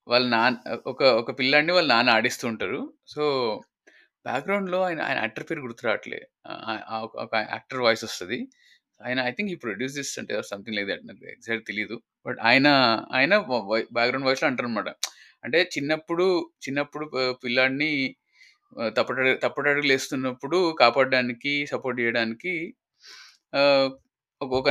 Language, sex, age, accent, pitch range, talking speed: Telugu, male, 20-39, native, 125-155 Hz, 120 wpm